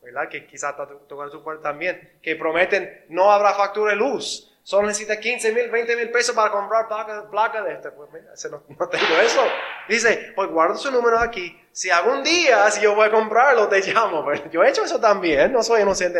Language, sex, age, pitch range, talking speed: Spanish, male, 20-39, 170-230 Hz, 220 wpm